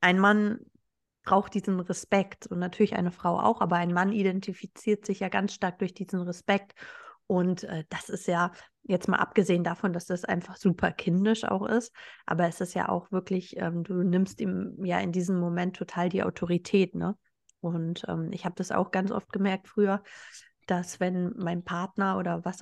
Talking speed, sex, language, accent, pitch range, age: 190 wpm, female, German, German, 180-205 Hz, 30-49